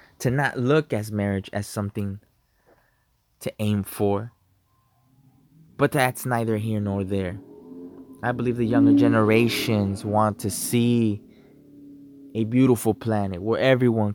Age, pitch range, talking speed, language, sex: 20-39, 105-125 Hz, 125 wpm, English, male